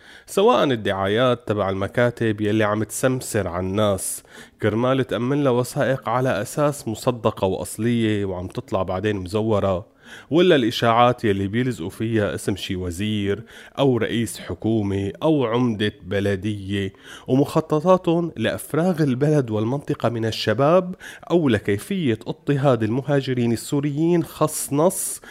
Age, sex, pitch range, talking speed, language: 30-49, male, 105-145 Hz, 110 wpm, Arabic